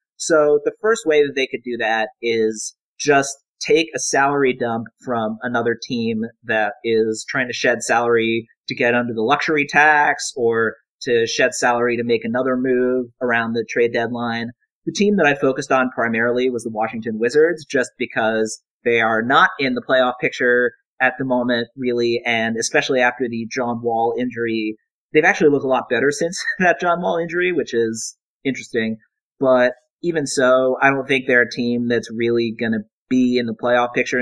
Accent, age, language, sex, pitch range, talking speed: American, 30-49, English, male, 115-145 Hz, 185 wpm